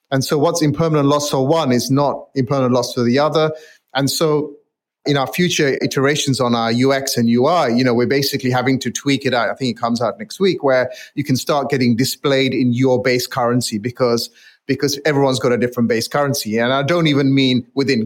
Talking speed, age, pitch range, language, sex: 215 wpm, 30-49, 120-140 Hz, English, male